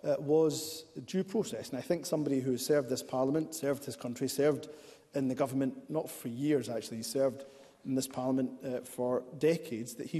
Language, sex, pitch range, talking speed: English, male, 135-170 Hz, 190 wpm